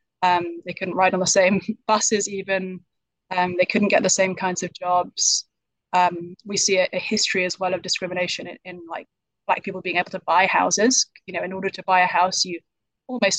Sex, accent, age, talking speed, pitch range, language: female, British, 20-39, 215 wpm, 185-215 Hz, English